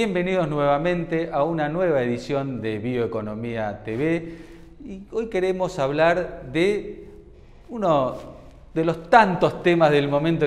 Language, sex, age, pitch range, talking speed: Spanish, male, 40-59, 135-185 Hz, 115 wpm